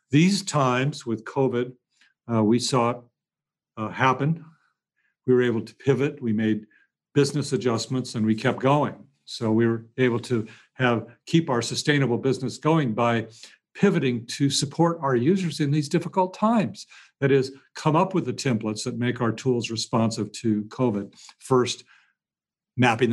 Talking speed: 155 wpm